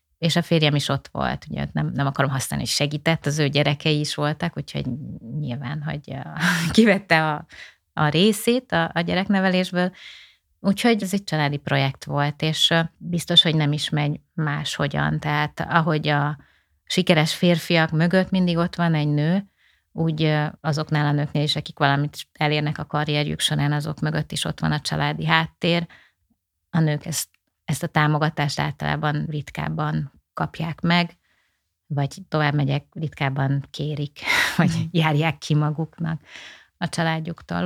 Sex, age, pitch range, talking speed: female, 30-49, 145-170 Hz, 145 wpm